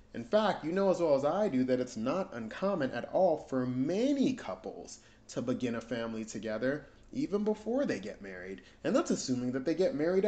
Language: English